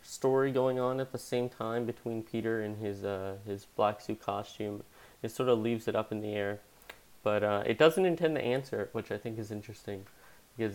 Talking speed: 220 wpm